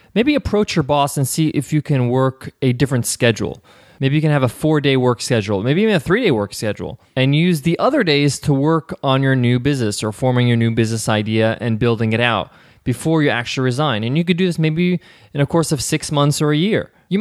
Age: 20-39